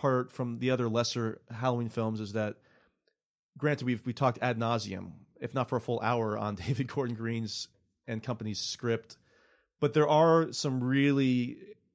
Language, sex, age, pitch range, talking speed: English, male, 30-49, 115-140 Hz, 165 wpm